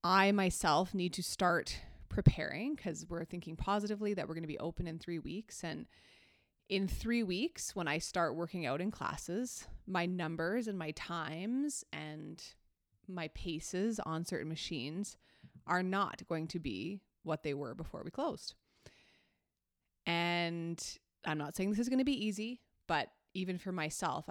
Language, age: English, 20-39